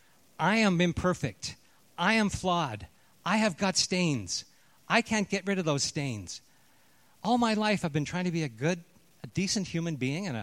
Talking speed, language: 185 wpm, English